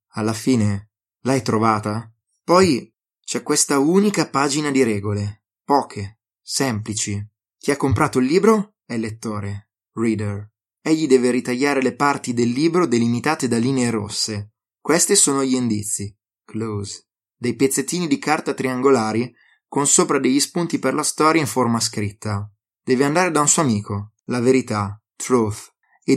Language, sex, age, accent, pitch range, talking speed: Italian, male, 20-39, native, 110-140 Hz, 145 wpm